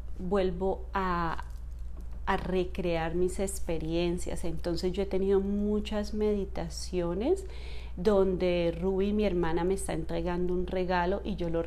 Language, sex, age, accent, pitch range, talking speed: English, female, 30-49, Colombian, 175-210 Hz, 125 wpm